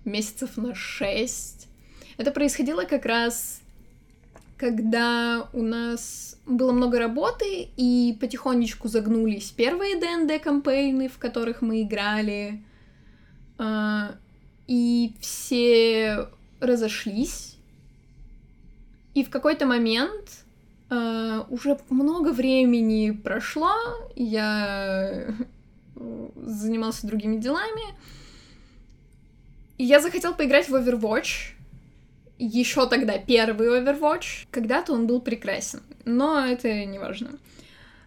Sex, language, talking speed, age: female, Russian, 85 wpm, 10-29